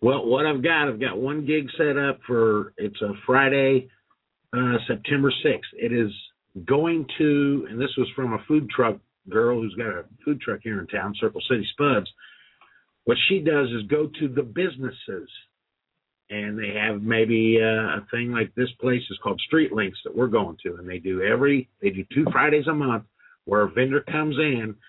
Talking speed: 195 wpm